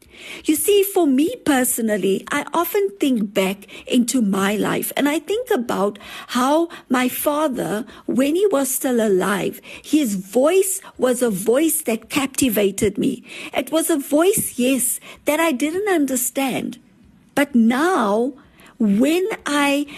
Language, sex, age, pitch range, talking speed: English, female, 50-69, 220-310 Hz, 135 wpm